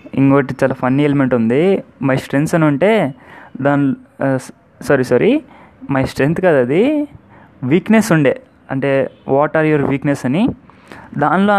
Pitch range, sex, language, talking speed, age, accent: 130-160 Hz, male, Telugu, 125 wpm, 20-39, native